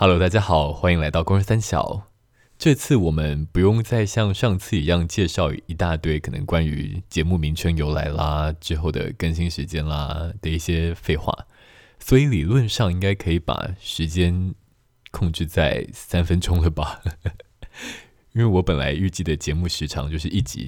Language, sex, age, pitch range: Chinese, male, 20-39, 80-110 Hz